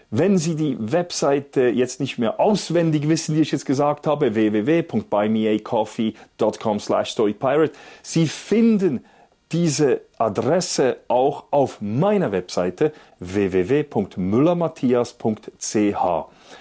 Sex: male